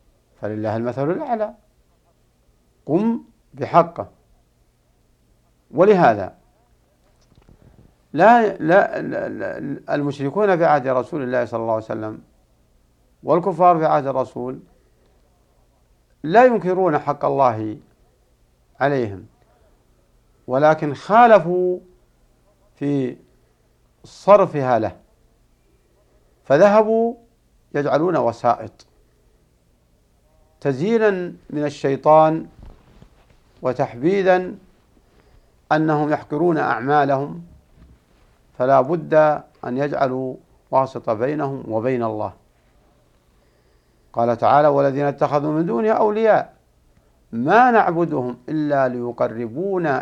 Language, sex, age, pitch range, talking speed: Arabic, male, 60-79, 100-155 Hz, 75 wpm